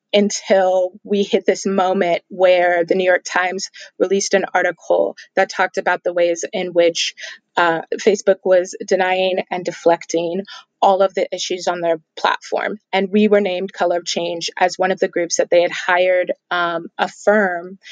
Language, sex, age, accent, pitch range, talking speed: English, female, 20-39, American, 180-205 Hz, 175 wpm